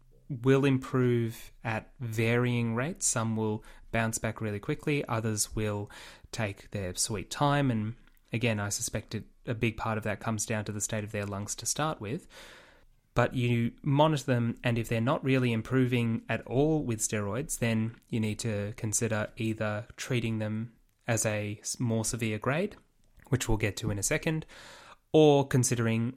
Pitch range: 110-125 Hz